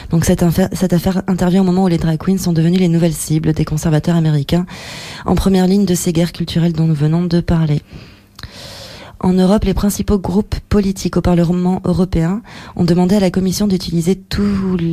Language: French